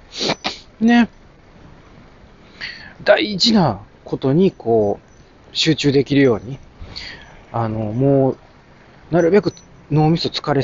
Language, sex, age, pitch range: Japanese, male, 40-59, 110-165 Hz